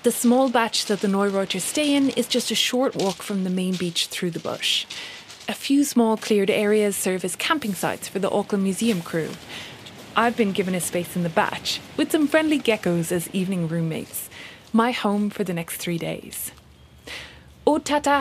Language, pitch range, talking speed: English, 180-255 Hz, 190 wpm